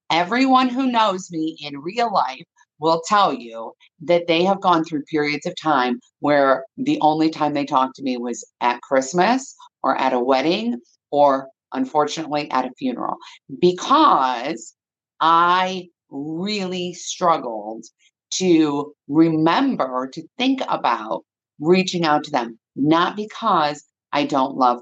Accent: American